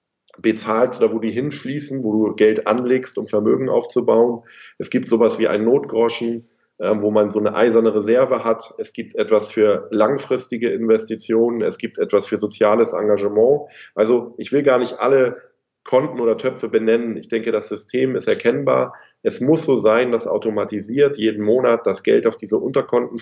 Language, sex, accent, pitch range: German, male, German, 110-145 Hz